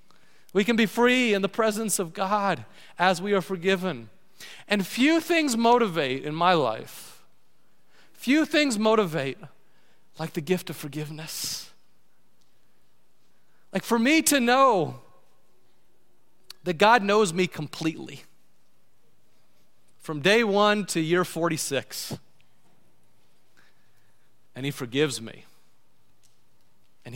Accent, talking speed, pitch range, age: American, 110 wpm, 170-235 Hz, 40-59